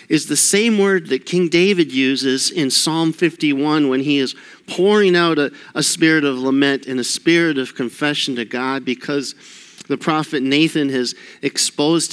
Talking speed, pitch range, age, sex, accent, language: 170 wpm, 130-160 Hz, 50-69, male, American, English